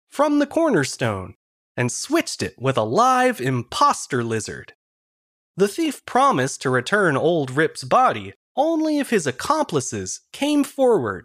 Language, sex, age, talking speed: English, male, 30-49, 135 wpm